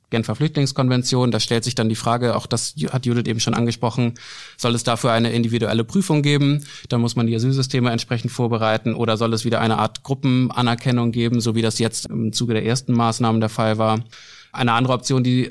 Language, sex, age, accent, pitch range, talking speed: German, male, 20-39, German, 110-125 Hz, 205 wpm